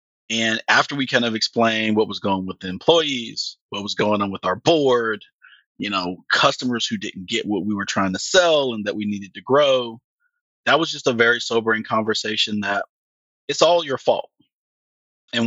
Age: 30-49